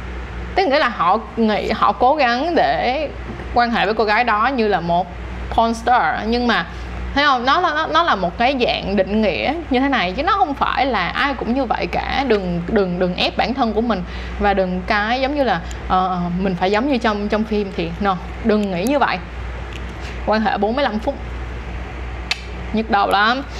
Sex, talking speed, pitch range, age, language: female, 205 wpm, 190-255 Hz, 20-39, Vietnamese